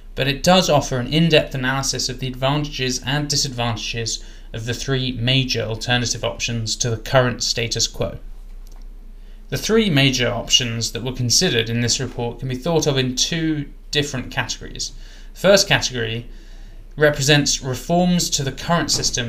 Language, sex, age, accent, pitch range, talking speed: English, male, 20-39, British, 115-145 Hz, 150 wpm